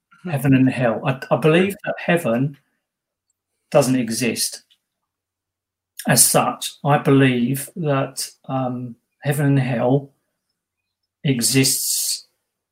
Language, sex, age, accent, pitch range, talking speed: English, male, 40-59, British, 115-140 Hz, 95 wpm